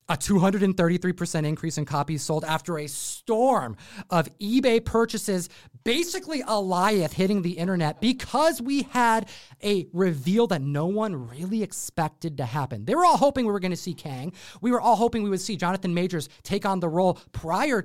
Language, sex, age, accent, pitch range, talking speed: English, male, 30-49, American, 150-205 Hz, 180 wpm